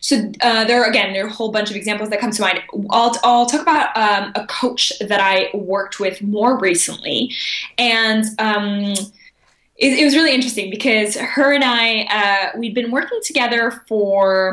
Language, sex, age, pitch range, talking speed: English, female, 10-29, 195-240 Hz, 185 wpm